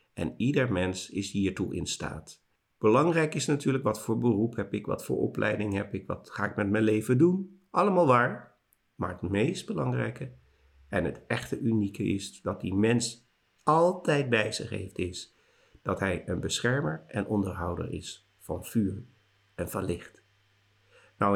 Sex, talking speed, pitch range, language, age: male, 165 wpm, 100-125 Hz, Dutch, 50-69